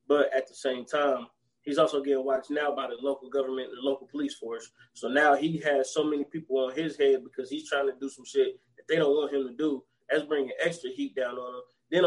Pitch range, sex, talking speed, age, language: 130-220 Hz, male, 250 wpm, 20-39, English